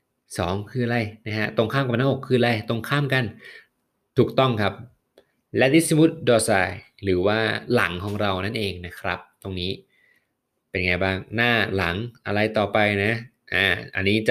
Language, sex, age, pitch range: Thai, male, 20-39, 95-115 Hz